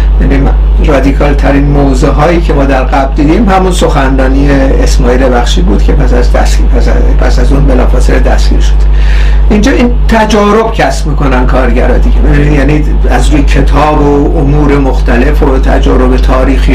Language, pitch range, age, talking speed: Persian, 130-185 Hz, 60-79, 145 wpm